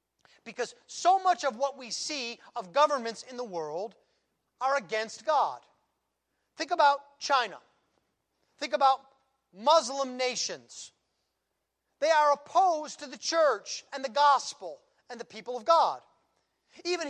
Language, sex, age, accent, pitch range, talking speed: English, male, 40-59, American, 225-310 Hz, 130 wpm